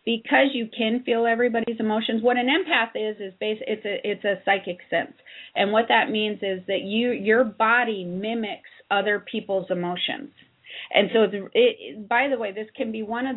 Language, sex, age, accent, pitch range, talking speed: English, female, 40-59, American, 195-240 Hz, 195 wpm